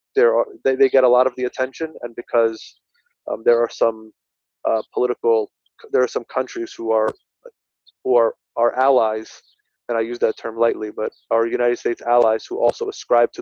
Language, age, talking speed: English, 20-39, 190 wpm